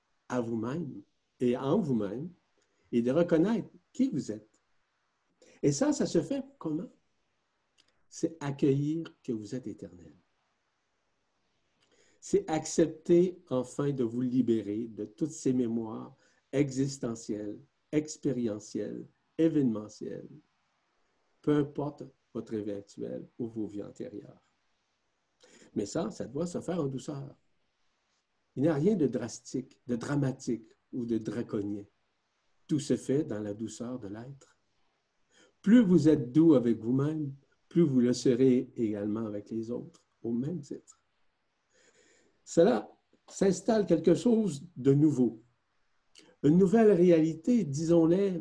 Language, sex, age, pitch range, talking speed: French, male, 60-79, 115-165 Hz, 125 wpm